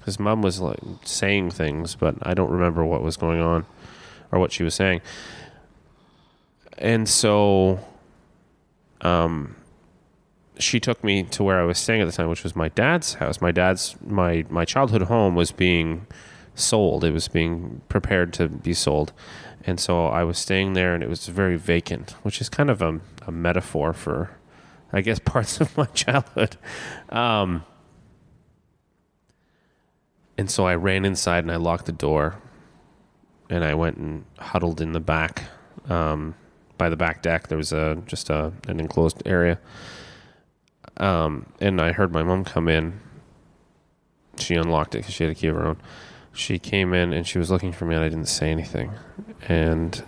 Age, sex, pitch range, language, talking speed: 30-49, male, 80-100 Hz, English, 175 wpm